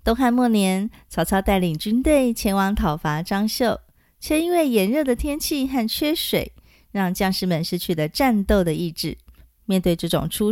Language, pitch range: Chinese, 170-245 Hz